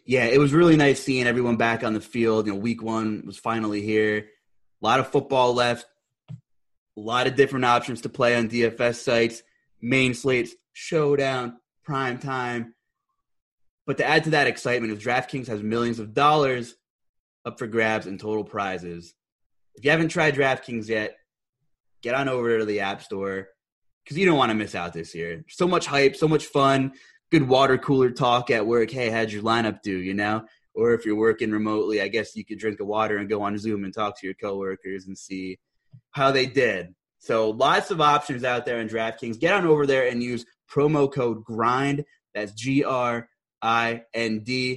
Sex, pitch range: male, 110-140 Hz